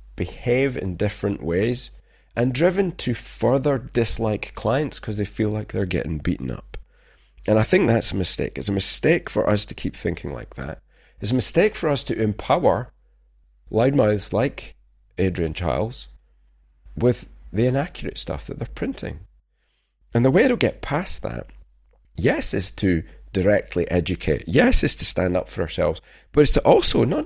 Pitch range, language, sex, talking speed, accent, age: 70-120 Hz, English, male, 165 wpm, British, 40-59